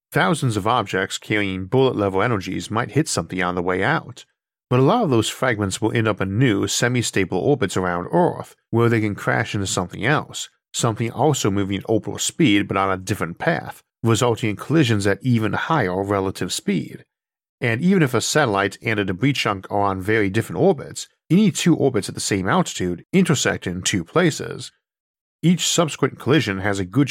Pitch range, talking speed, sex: 95-135 Hz, 190 wpm, male